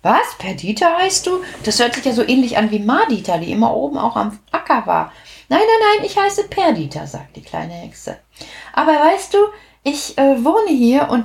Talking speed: 205 wpm